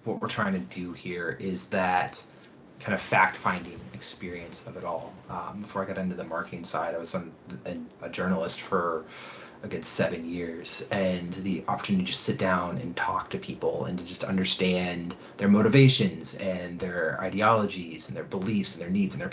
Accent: American